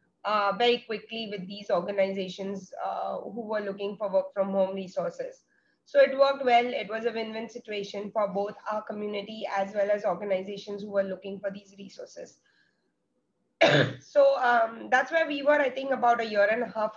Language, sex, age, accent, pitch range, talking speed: English, female, 20-39, Indian, 200-240 Hz, 185 wpm